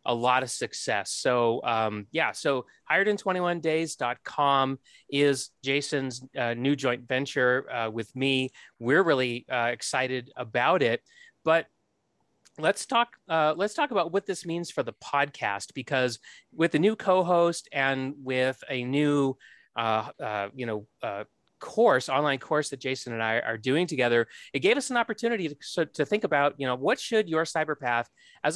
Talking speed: 165 wpm